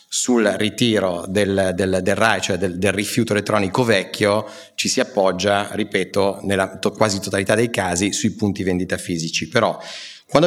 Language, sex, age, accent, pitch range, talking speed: Italian, male, 30-49, native, 95-110 Hz, 160 wpm